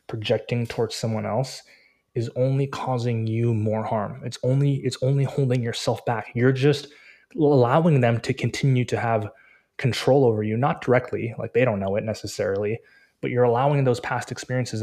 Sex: male